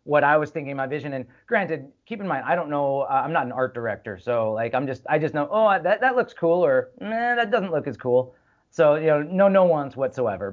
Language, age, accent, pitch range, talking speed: English, 30-49, American, 125-155 Hz, 270 wpm